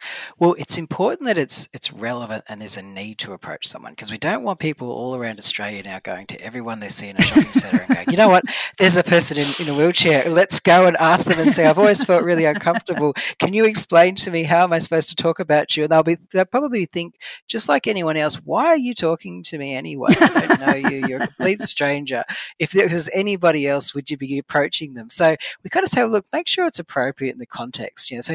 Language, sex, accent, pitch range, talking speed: English, female, Australian, 125-175 Hz, 255 wpm